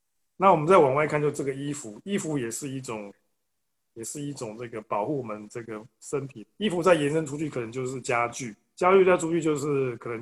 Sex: male